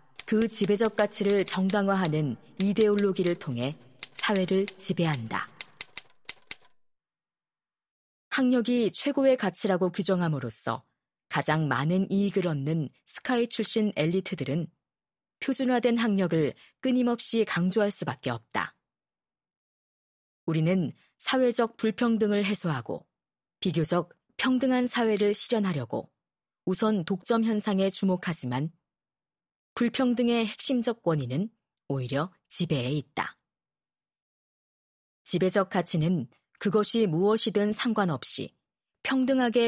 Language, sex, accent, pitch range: Korean, female, native, 165-225 Hz